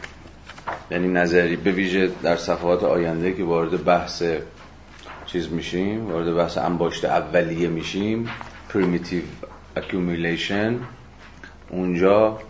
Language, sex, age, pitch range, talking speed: Persian, male, 40-59, 85-100 Hz, 95 wpm